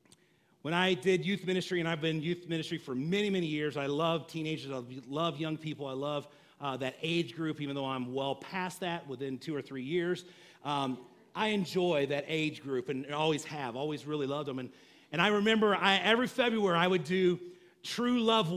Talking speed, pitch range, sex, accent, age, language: 205 wpm, 155-245 Hz, male, American, 40-59, English